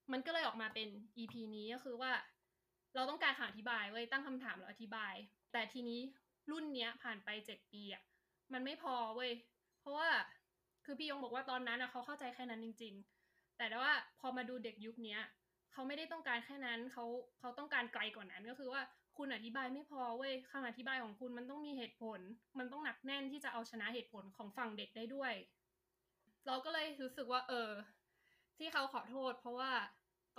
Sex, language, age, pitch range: female, Thai, 20-39, 225-265 Hz